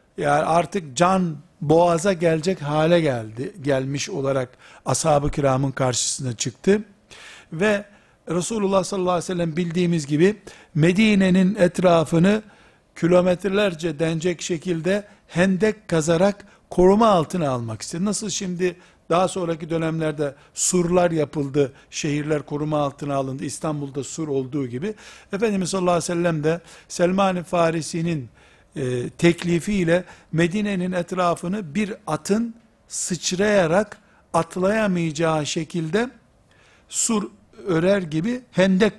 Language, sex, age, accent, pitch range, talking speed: Turkish, male, 60-79, native, 155-195 Hz, 105 wpm